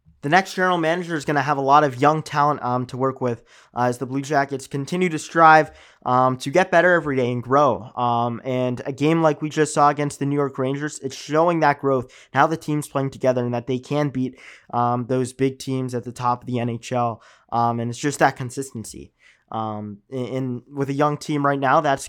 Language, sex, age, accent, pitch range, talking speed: English, male, 20-39, American, 125-150 Hz, 230 wpm